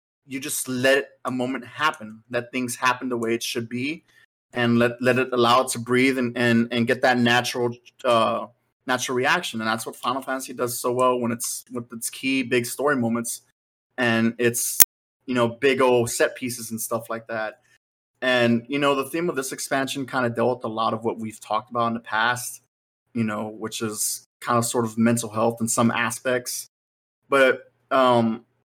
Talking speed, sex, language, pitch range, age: 200 wpm, male, English, 115-125 Hz, 30-49